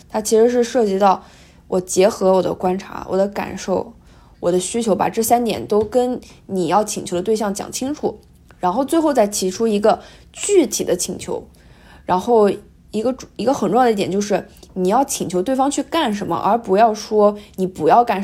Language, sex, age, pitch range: Chinese, female, 20-39, 175-225 Hz